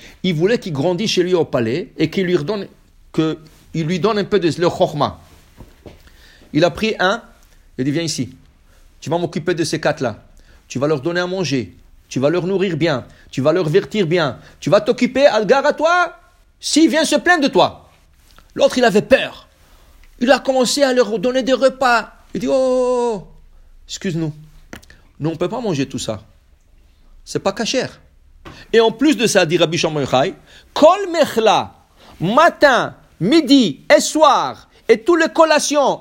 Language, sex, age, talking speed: English, male, 50-69, 175 wpm